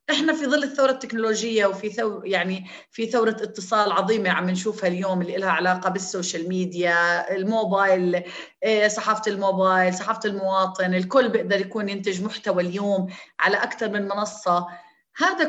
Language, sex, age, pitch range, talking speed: Arabic, female, 30-49, 190-260 Hz, 140 wpm